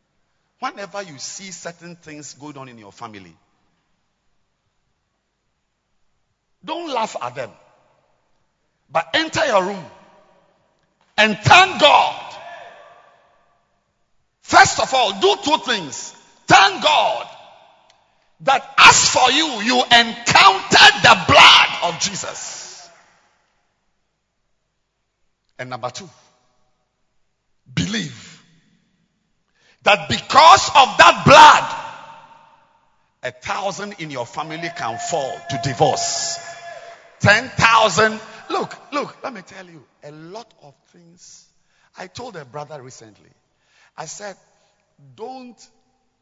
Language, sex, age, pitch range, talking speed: English, male, 50-69, 140-220 Hz, 100 wpm